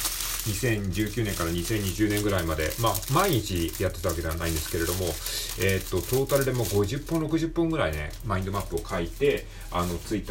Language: Japanese